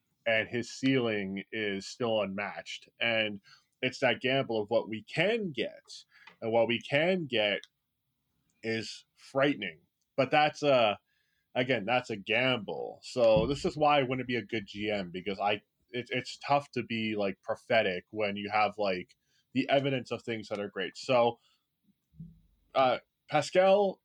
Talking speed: 155 wpm